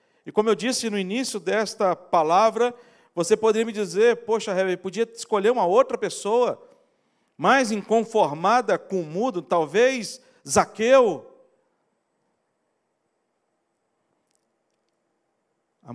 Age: 50-69